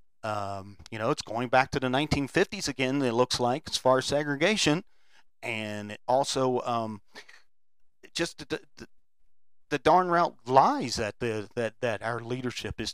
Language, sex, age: English, male, 40-59